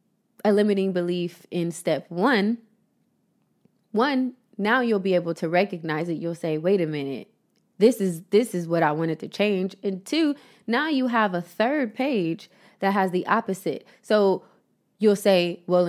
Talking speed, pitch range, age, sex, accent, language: 165 wpm, 175-220 Hz, 20-39, female, American, English